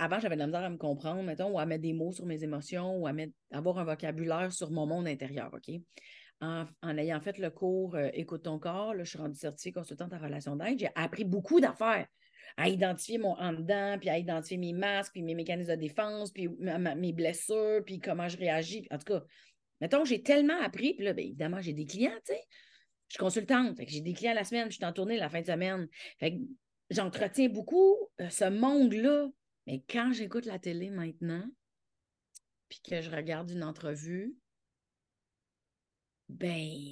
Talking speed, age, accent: 210 wpm, 30-49, Canadian